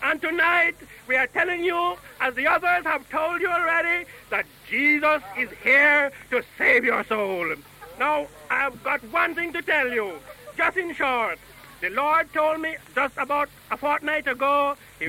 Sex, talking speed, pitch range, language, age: male, 165 wpm, 250-330 Hz, English, 60-79